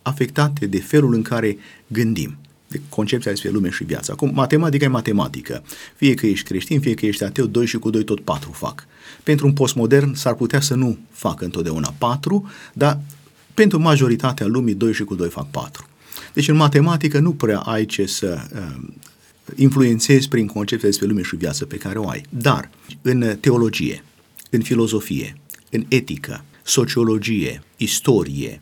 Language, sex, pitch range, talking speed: Romanian, male, 100-135 Hz, 170 wpm